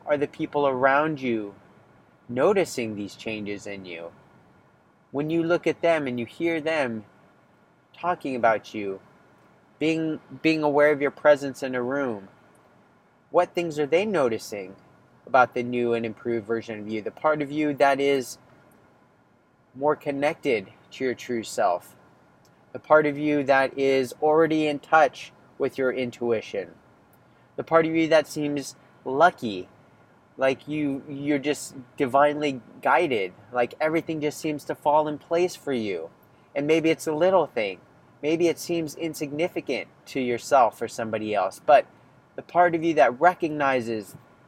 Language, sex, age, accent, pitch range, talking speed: English, male, 30-49, American, 130-160 Hz, 150 wpm